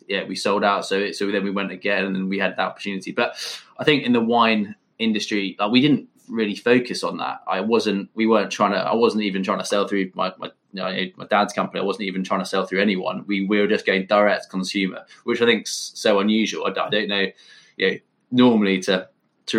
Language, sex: English, male